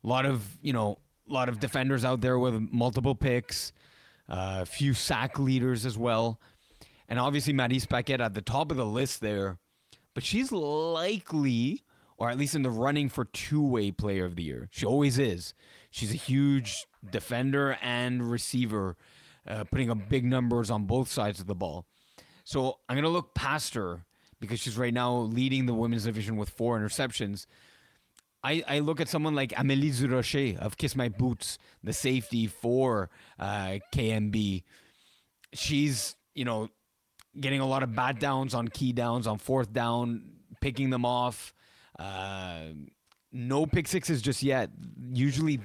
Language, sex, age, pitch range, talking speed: English, male, 30-49, 105-135 Hz, 165 wpm